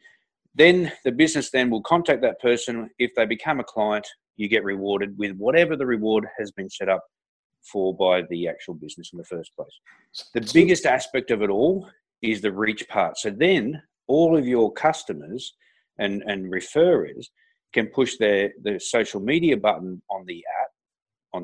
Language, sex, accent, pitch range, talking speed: English, male, Australian, 105-150 Hz, 175 wpm